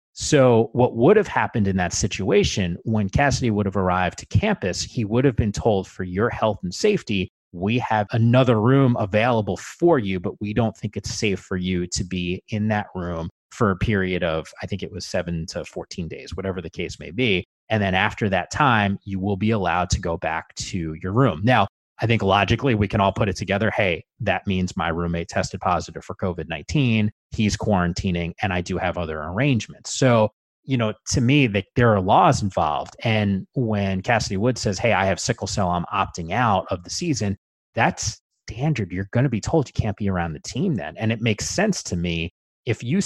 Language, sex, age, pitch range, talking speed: English, male, 30-49, 95-120 Hz, 210 wpm